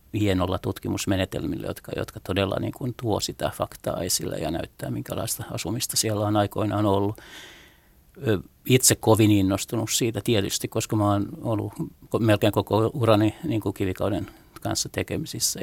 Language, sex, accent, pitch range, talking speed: Finnish, male, native, 100-115 Hz, 125 wpm